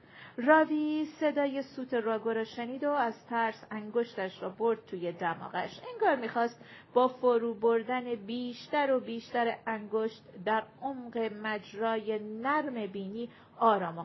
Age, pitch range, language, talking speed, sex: 40-59, 210-270 Hz, Persian, 130 wpm, female